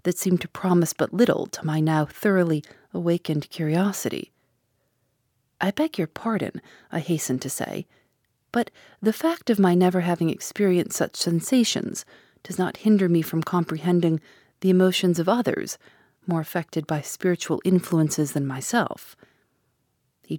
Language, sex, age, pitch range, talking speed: English, female, 40-59, 155-200 Hz, 140 wpm